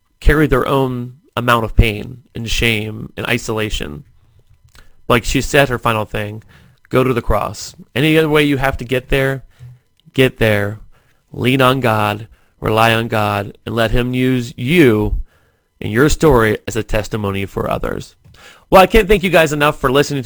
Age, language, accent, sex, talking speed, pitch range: 30-49, English, American, male, 170 wpm, 115-135 Hz